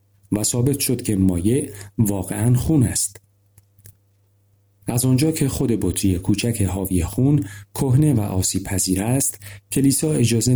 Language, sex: Persian, male